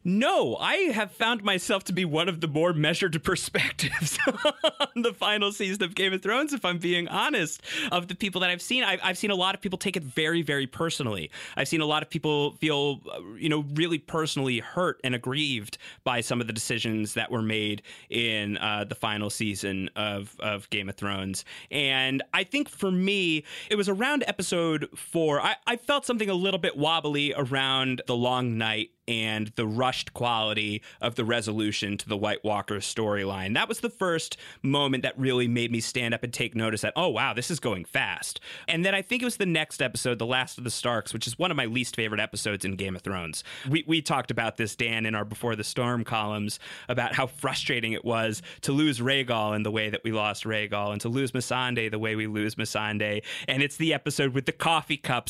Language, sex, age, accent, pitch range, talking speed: English, male, 30-49, American, 110-170 Hz, 215 wpm